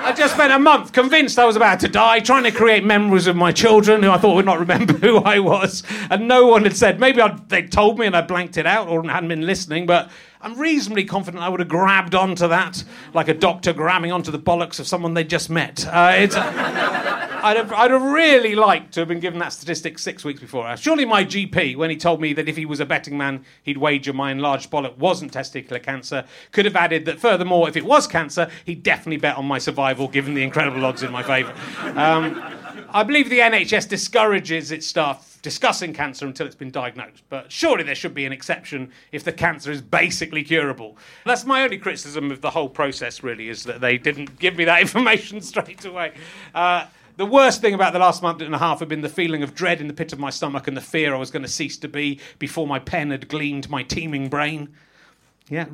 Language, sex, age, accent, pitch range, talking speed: English, male, 40-59, British, 145-200 Hz, 235 wpm